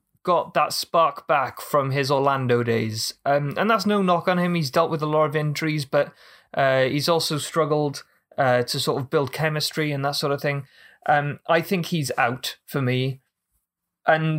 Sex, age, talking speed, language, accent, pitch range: male, 20-39, 190 wpm, English, British, 135-165 Hz